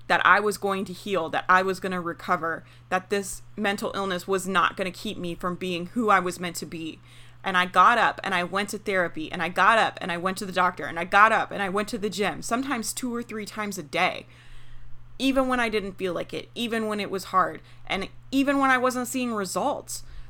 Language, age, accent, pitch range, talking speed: English, 30-49, American, 180-215 Hz, 245 wpm